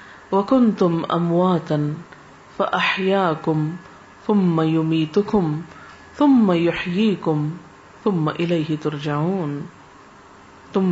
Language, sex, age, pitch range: Urdu, female, 40-59, 160-210 Hz